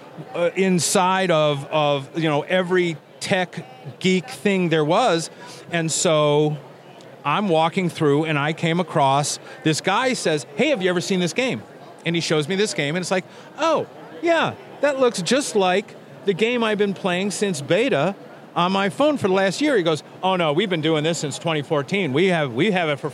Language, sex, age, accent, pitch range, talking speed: English, male, 40-59, American, 150-195 Hz, 195 wpm